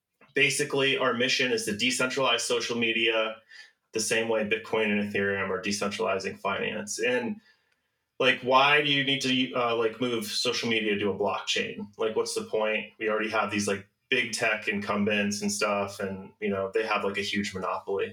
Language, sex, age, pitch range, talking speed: English, male, 20-39, 110-160 Hz, 180 wpm